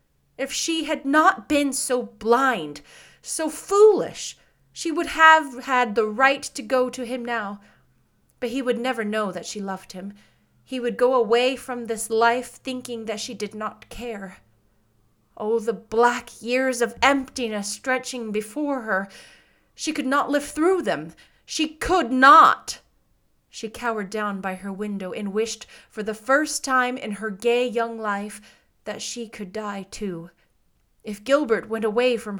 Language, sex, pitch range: English, female, 210-260 Hz